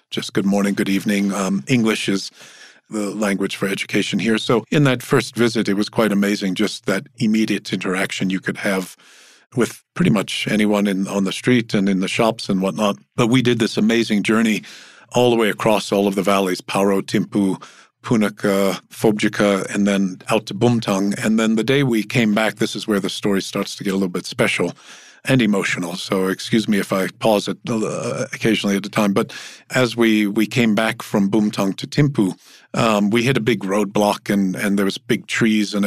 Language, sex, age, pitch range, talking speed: English, male, 50-69, 100-115 Hz, 205 wpm